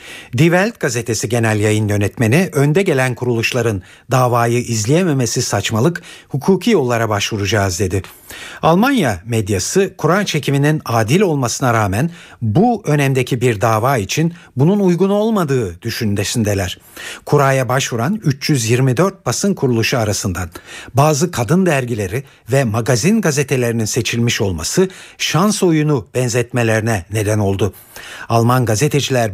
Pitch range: 110-150 Hz